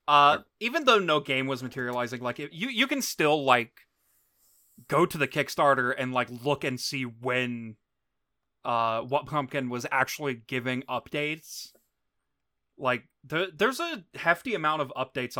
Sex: male